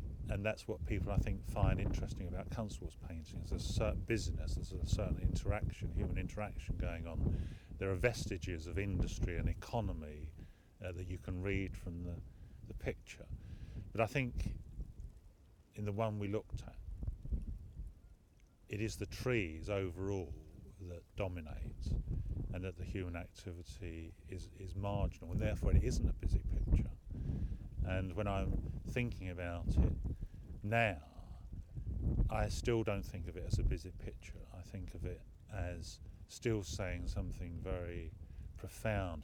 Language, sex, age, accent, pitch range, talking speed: English, male, 40-59, British, 85-100 Hz, 150 wpm